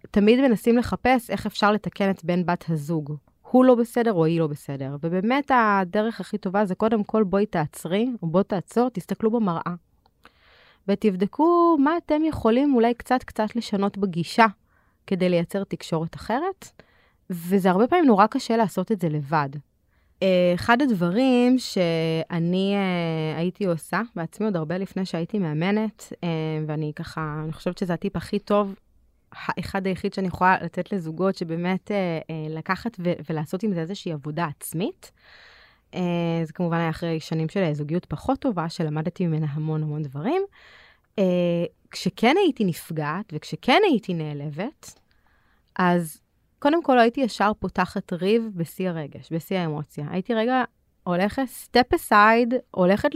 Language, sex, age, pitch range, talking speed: Hebrew, female, 20-39, 165-225 Hz, 145 wpm